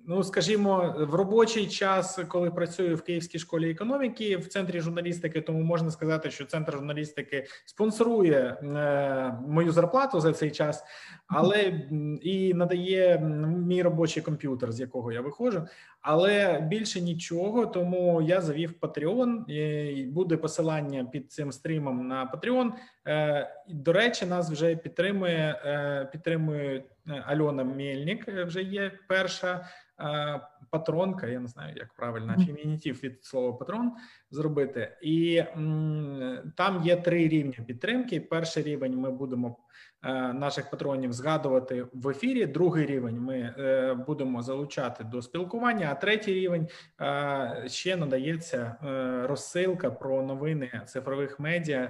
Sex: male